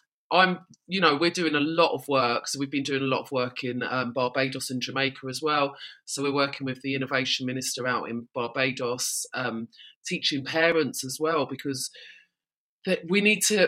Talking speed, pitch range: 195 wpm, 150-195 Hz